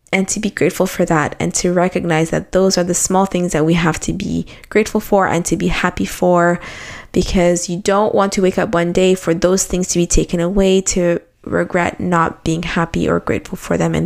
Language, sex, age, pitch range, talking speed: English, female, 20-39, 175-215 Hz, 225 wpm